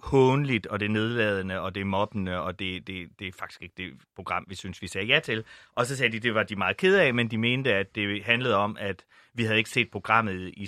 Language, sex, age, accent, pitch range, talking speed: Danish, male, 30-49, native, 100-120 Hz, 245 wpm